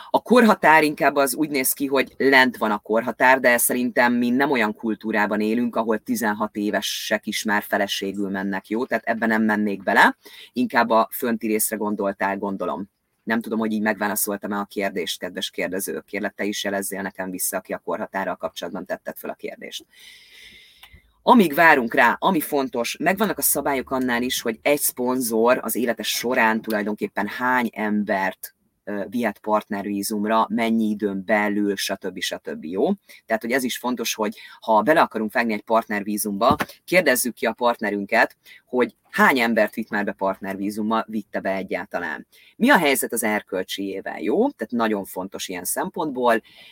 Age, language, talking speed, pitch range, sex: 30-49, Hungarian, 160 wpm, 100-120 Hz, female